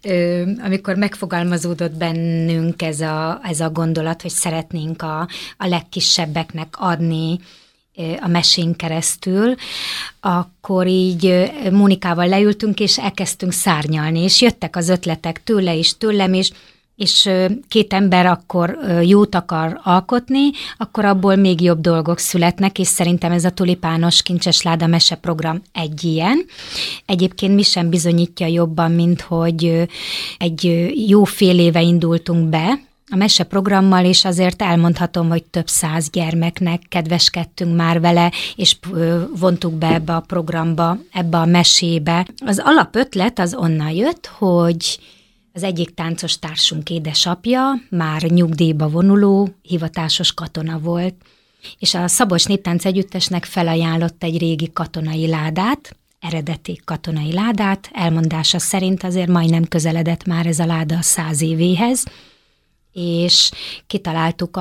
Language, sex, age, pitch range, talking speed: Hungarian, female, 30-49, 165-185 Hz, 125 wpm